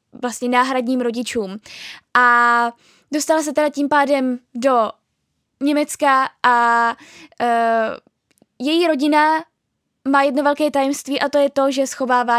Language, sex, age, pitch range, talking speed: Czech, female, 10-29, 245-295 Hz, 115 wpm